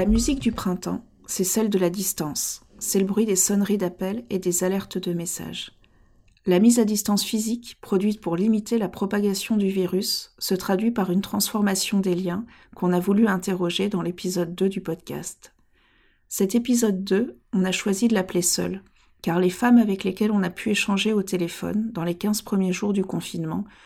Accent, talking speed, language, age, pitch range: French, 190 wpm, French, 40-59, 180-210 Hz